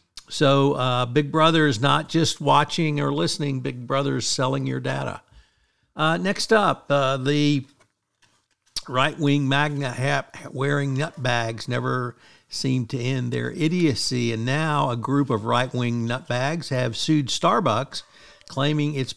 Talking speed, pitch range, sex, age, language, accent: 135 wpm, 125-150 Hz, male, 60-79, English, American